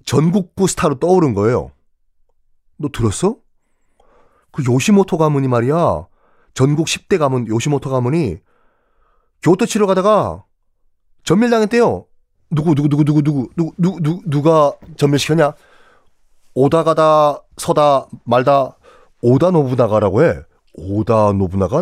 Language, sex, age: Korean, male, 30-49